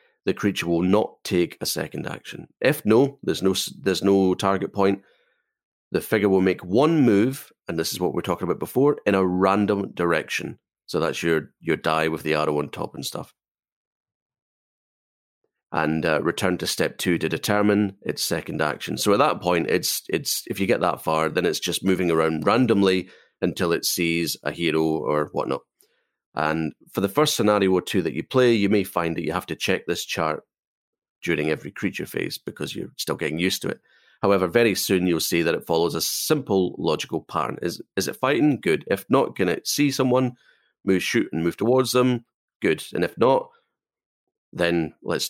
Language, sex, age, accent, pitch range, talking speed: English, male, 30-49, British, 80-105 Hz, 195 wpm